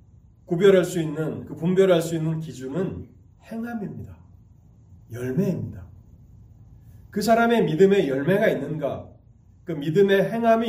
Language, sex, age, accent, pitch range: Korean, male, 30-49, native, 110-165 Hz